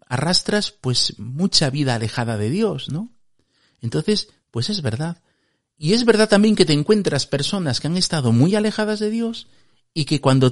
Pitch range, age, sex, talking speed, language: 120-185 Hz, 50-69, male, 170 wpm, Spanish